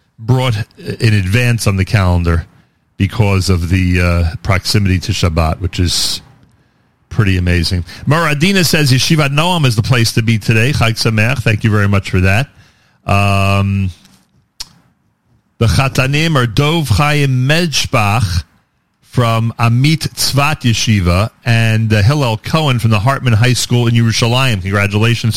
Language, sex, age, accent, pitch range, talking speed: English, male, 40-59, American, 100-120 Hz, 135 wpm